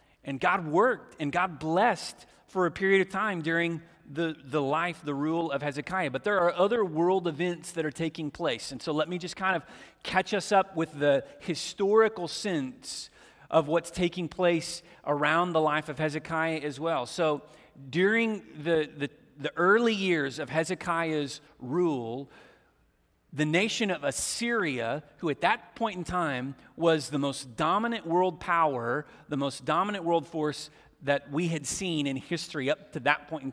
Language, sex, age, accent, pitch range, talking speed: English, male, 40-59, American, 150-185 Hz, 170 wpm